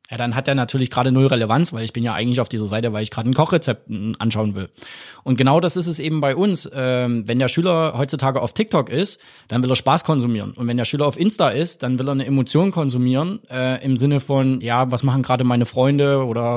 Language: German